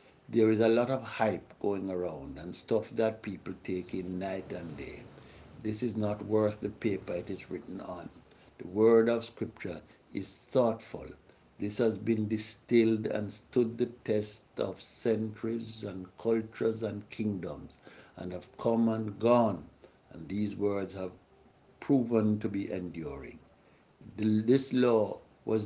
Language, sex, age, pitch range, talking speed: English, male, 60-79, 100-115 Hz, 145 wpm